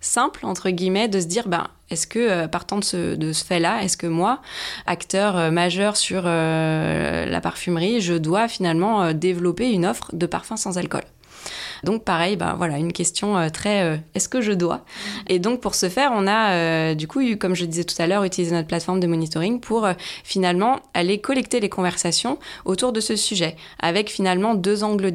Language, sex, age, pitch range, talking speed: French, female, 20-39, 170-210 Hz, 210 wpm